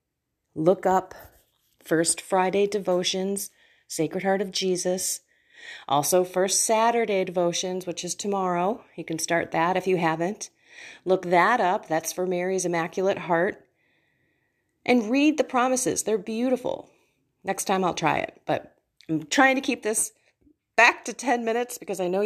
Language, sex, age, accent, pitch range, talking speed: English, female, 30-49, American, 170-235 Hz, 150 wpm